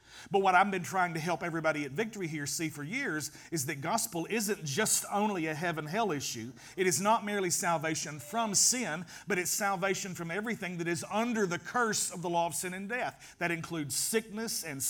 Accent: American